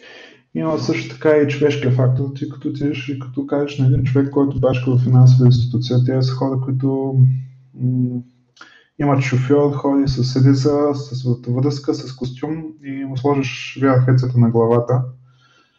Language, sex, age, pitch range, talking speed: Bulgarian, male, 20-39, 130-145 Hz, 155 wpm